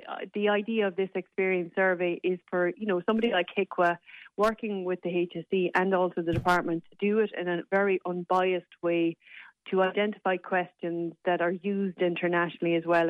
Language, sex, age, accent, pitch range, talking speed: English, female, 30-49, Irish, 175-195 Hz, 180 wpm